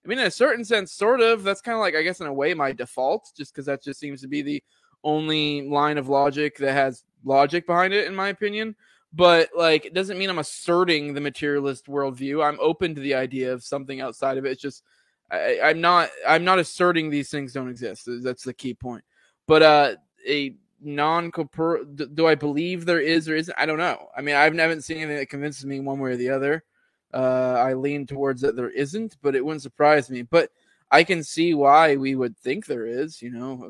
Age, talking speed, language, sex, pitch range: 20-39, 230 wpm, English, male, 135-165 Hz